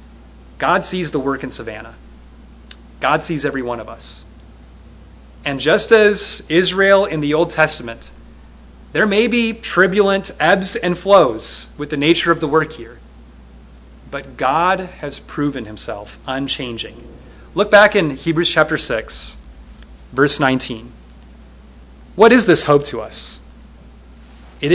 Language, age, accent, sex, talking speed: English, 30-49, American, male, 135 wpm